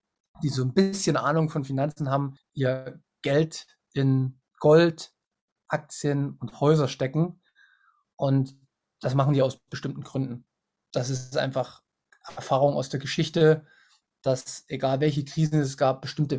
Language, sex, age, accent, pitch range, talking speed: German, male, 20-39, German, 135-155 Hz, 135 wpm